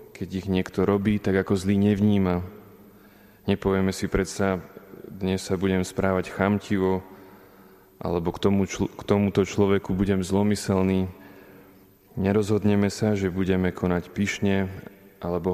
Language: Slovak